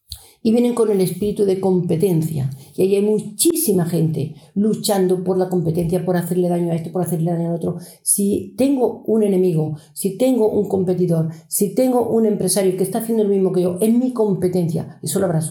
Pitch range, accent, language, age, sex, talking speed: 170-205 Hz, Spanish, Spanish, 50-69, female, 195 wpm